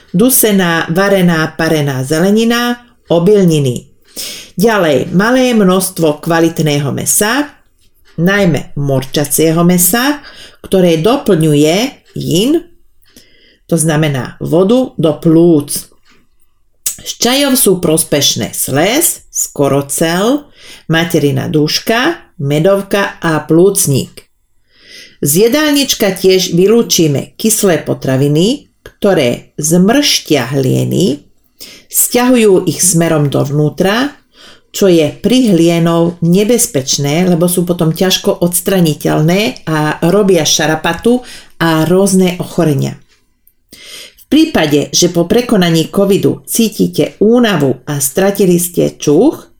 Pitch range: 155-210 Hz